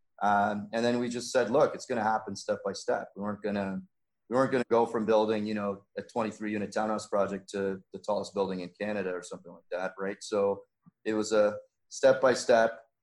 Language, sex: English, male